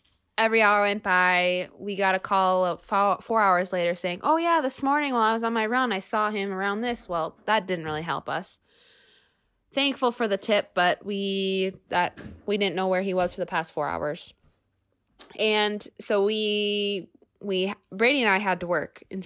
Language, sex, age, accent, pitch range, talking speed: English, female, 20-39, American, 165-210 Hz, 195 wpm